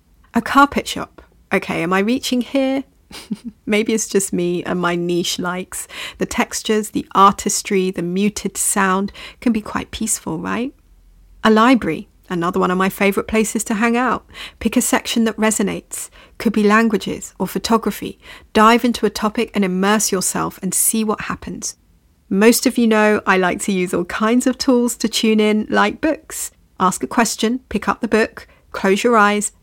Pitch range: 190-230 Hz